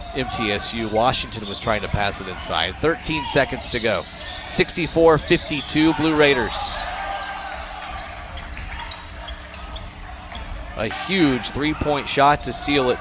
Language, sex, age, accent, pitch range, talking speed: English, male, 30-49, American, 135-175 Hz, 100 wpm